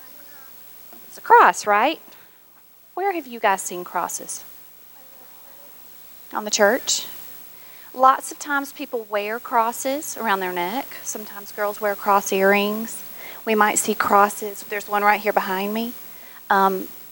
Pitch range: 190-235 Hz